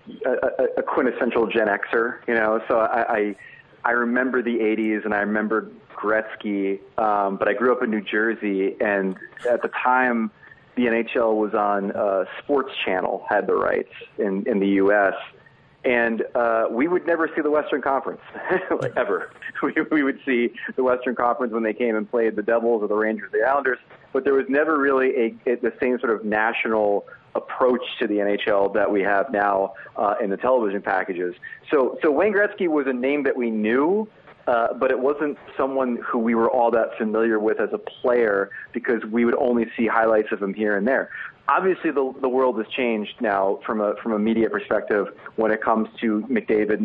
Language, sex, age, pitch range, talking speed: English, male, 30-49, 105-125 Hz, 195 wpm